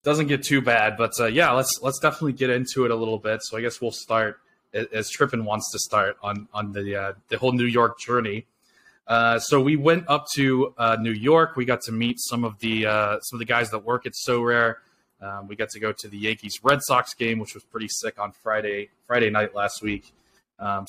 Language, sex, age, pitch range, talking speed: English, male, 20-39, 110-125 Hz, 240 wpm